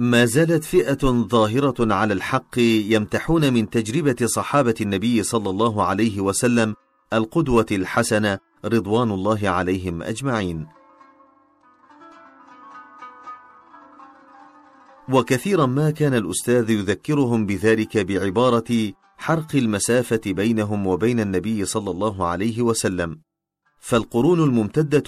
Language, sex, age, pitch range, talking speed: Arabic, male, 40-59, 105-135 Hz, 95 wpm